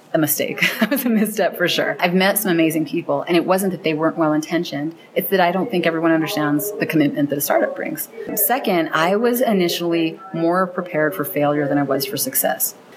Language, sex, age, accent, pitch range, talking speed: English, female, 30-49, American, 145-185 Hz, 215 wpm